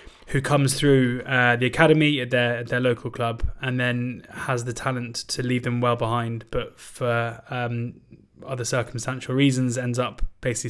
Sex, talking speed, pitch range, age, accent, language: male, 170 wpm, 120-130 Hz, 20-39, British, English